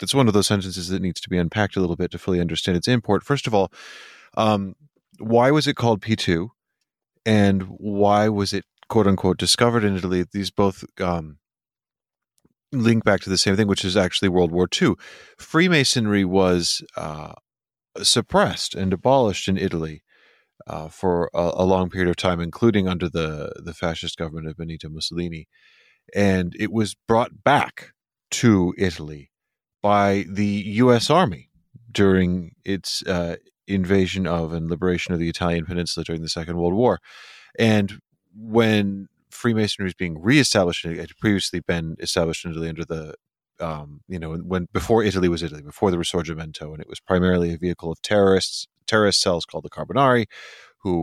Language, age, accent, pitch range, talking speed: English, 30-49, American, 85-105 Hz, 170 wpm